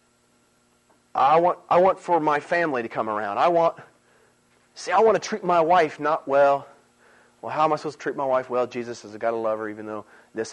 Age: 40-59